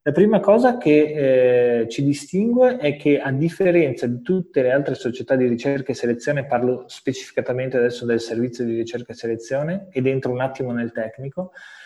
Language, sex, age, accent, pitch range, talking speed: Italian, male, 20-39, native, 120-160 Hz, 175 wpm